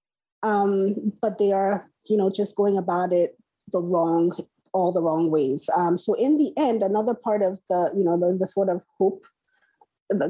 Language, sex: English, female